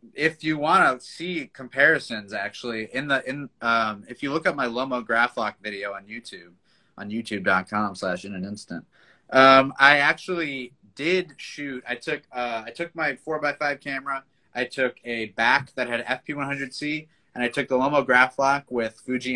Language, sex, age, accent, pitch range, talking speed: English, male, 30-49, American, 110-150 Hz, 170 wpm